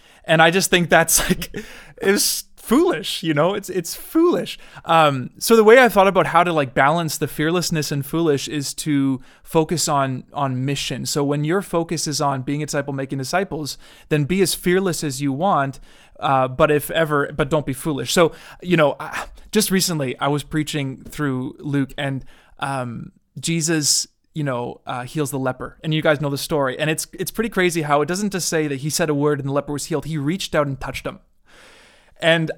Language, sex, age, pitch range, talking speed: English, male, 20-39, 140-170 Hz, 205 wpm